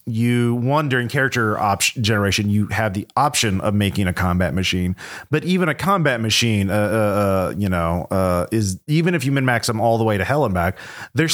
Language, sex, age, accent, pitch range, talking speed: English, male, 30-49, American, 100-130 Hz, 215 wpm